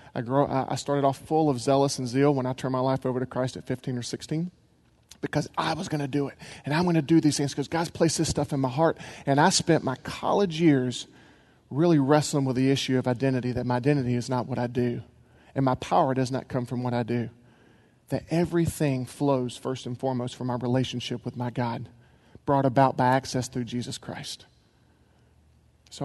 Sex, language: male, English